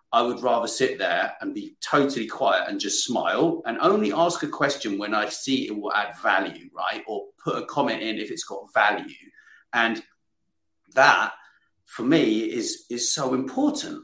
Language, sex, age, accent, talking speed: English, male, 40-59, British, 180 wpm